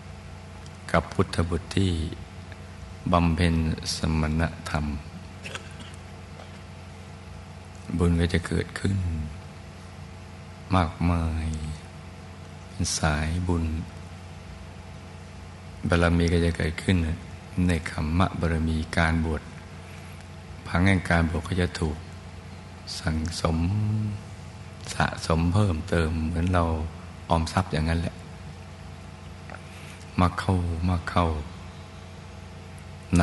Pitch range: 80-90 Hz